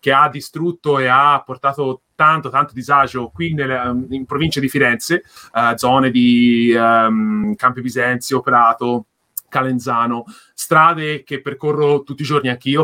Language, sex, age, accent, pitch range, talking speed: Italian, male, 30-49, native, 125-150 Hz, 140 wpm